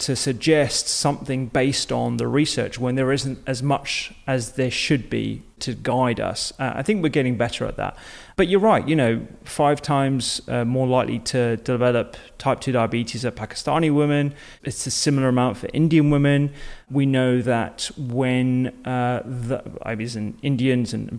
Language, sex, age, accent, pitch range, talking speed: English, male, 30-49, British, 120-135 Hz, 180 wpm